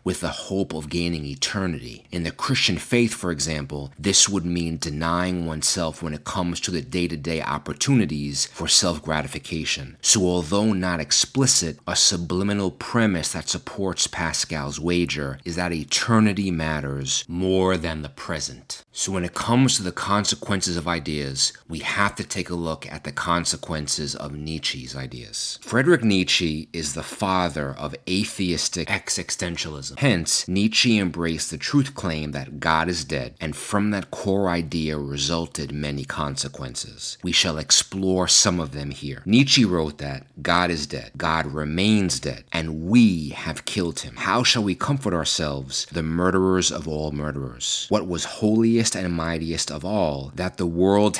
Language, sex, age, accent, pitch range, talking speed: English, male, 30-49, American, 75-95 Hz, 155 wpm